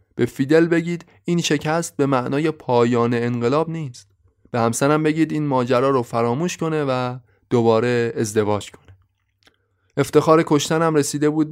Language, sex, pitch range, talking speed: Persian, male, 115-145 Hz, 135 wpm